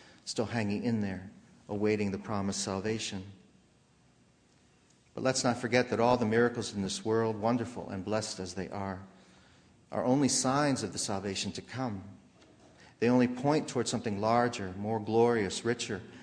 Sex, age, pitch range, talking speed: male, 40-59, 95-120 Hz, 155 wpm